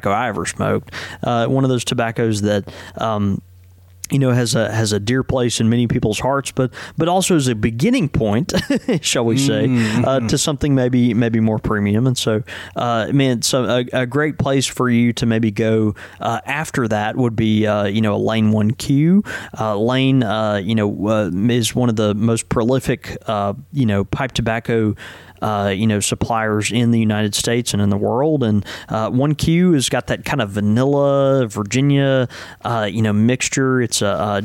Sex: male